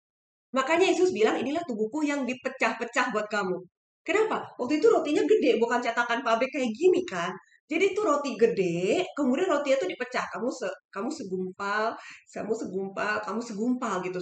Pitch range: 230-330 Hz